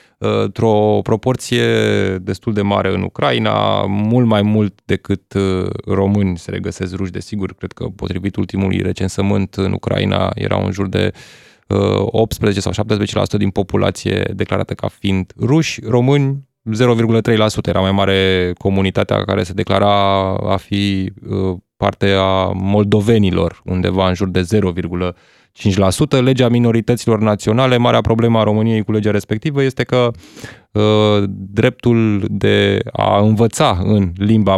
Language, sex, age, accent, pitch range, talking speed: Romanian, male, 20-39, native, 95-110 Hz, 125 wpm